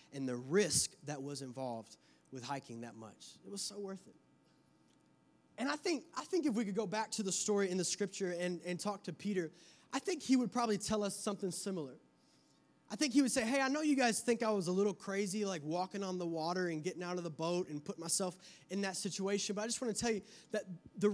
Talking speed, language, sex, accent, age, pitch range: 245 wpm, English, male, American, 20-39, 185-235 Hz